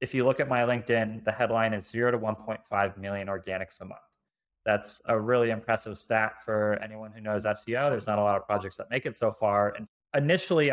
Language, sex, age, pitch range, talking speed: English, male, 20-39, 110-130 Hz, 220 wpm